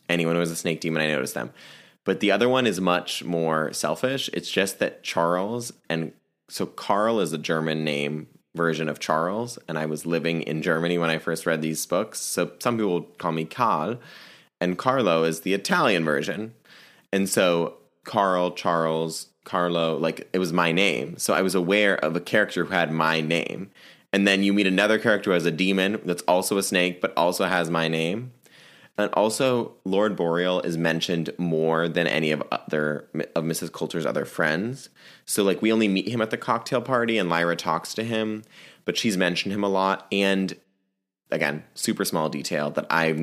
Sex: male